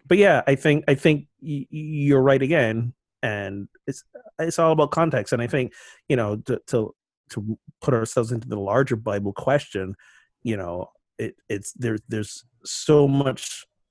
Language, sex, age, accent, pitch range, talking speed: English, male, 30-49, American, 105-130 Hz, 165 wpm